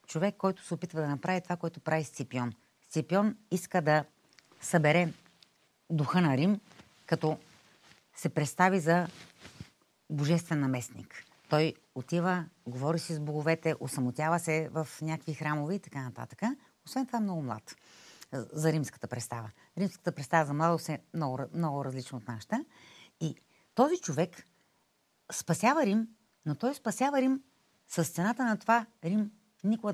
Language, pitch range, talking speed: Bulgarian, 150-210 Hz, 140 wpm